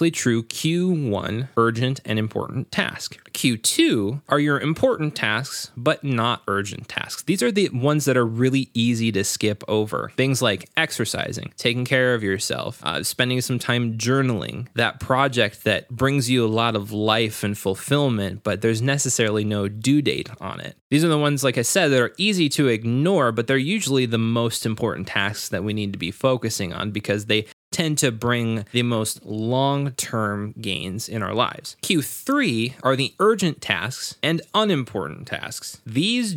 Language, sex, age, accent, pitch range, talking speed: English, male, 20-39, American, 105-140 Hz, 170 wpm